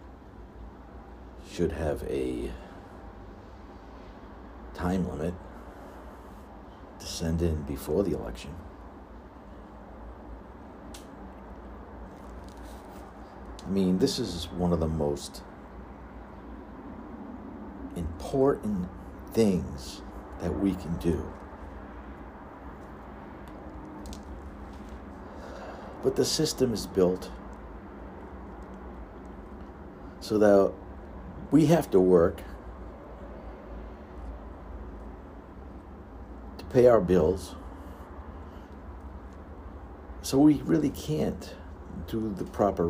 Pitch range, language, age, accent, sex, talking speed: 70-90 Hz, English, 60-79, American, male, 65 wpm